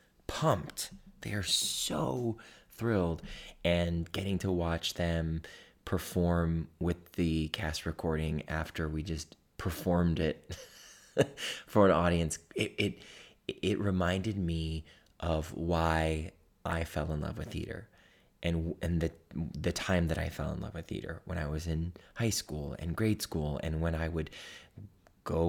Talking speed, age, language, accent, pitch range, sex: 145 wpm, 20-39, English, American, 80-90 Hz, male